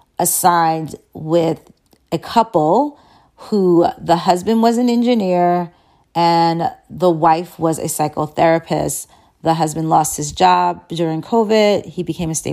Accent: American